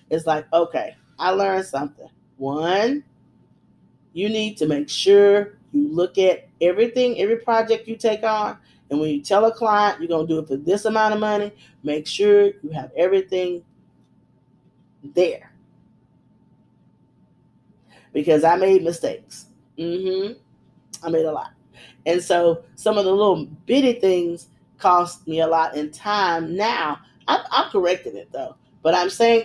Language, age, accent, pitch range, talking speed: English, 30-49, American, 165-215 Hz, 155 wpm